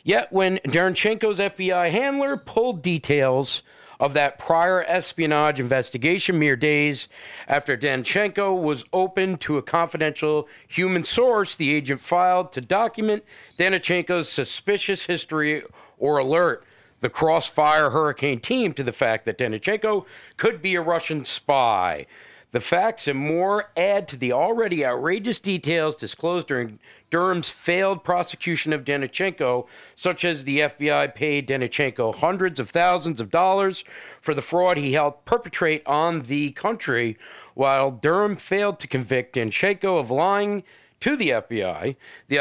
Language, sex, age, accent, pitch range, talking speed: English, male, 50-69, American, 140-185 Hz, 135 wpm